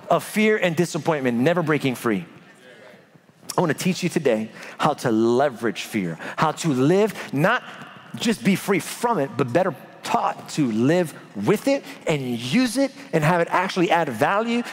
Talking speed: 165 wpm